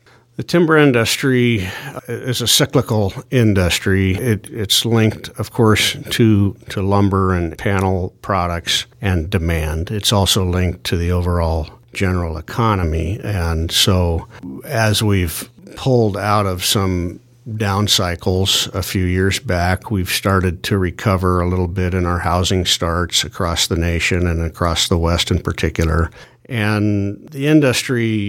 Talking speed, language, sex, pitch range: 135 wpm, English, male, 90-105 Hz